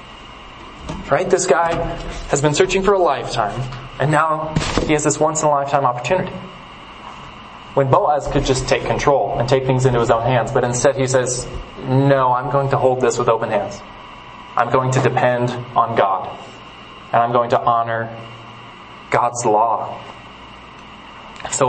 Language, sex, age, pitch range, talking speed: English, male, 20-39, 115-140 Hz, 155 wpm